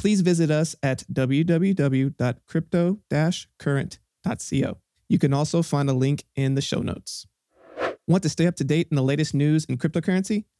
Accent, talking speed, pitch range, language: American, 155 wpm, 135-170 Hz, English